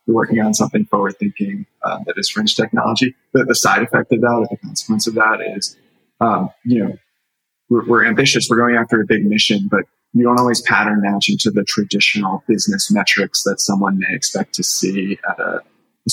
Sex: male